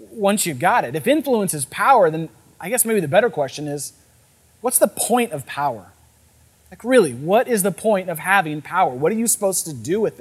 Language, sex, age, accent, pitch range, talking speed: English, male, 30-49, American, 145-210 Hz, 220 wpm